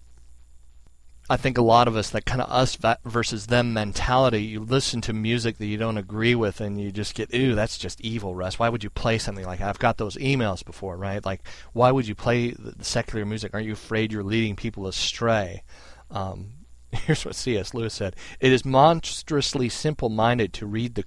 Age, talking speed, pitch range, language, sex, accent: 40-59, 205 wpm, 95-115 Hz, English, male, American